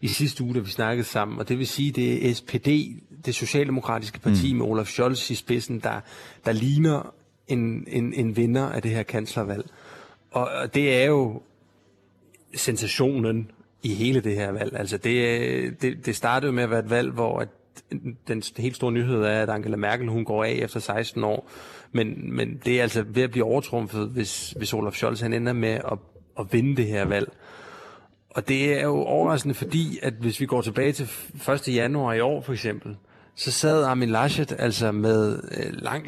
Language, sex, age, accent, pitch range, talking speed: Danish, male, 30-49, native, 110-135 Hz, 195 wpm